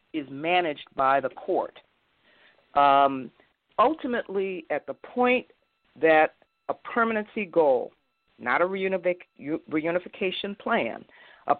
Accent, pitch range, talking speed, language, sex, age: American, 150-210 Hz, 100 wpm, English, female, 50-69